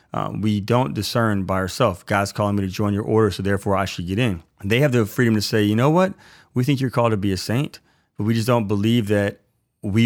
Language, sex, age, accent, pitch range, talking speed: English, male, 30-49, American, 100-120 Hz, 260 wpm